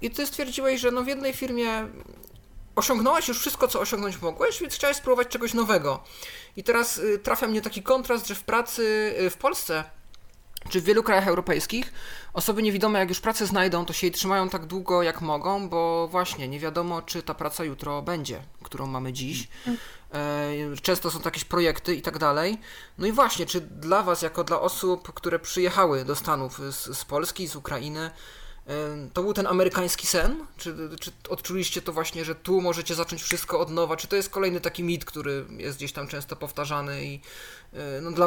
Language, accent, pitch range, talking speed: Polish, native, 160-210 Hz, 180 wpm